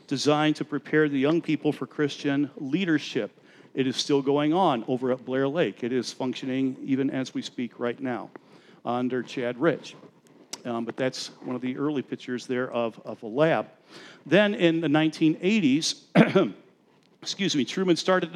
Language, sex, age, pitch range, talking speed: English, male, 50-69, 130-165 Hz, 165 wpm